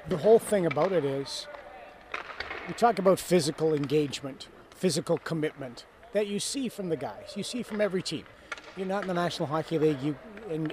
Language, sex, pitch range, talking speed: English, male, 155-180 Hz, 180 wpm